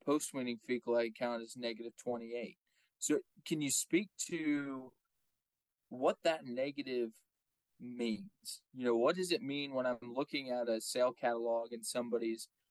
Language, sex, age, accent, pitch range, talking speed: English, male, 20-39, American, 115-135 Hz, 145 wpm